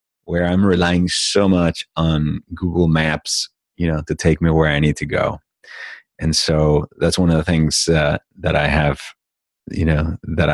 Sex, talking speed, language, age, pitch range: male, 180 wpm, English, 30-49, 80-105 Hz